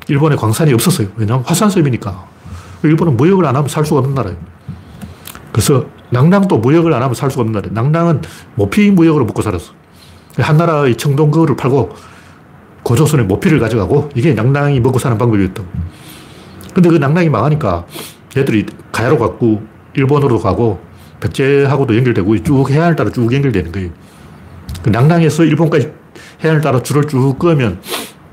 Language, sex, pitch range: Korean, male, 110-150 Hz